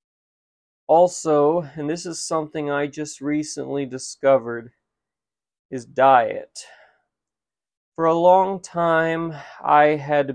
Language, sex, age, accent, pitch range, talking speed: English, male, 30-49, American, 135-155 Hz, 100 wpm